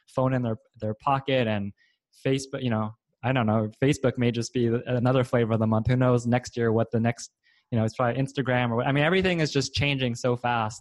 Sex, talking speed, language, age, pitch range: male, 240 wpm, English, 20-39, 115-135 Hz